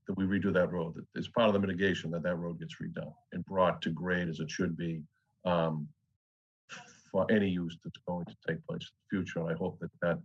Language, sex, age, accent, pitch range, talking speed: English, male, 50-69, American, 80-95 Hz, 230 wpm